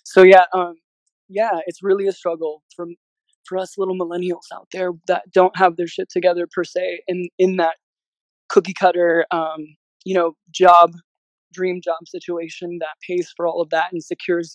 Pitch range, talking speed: 170-190 Hz, 175 wpm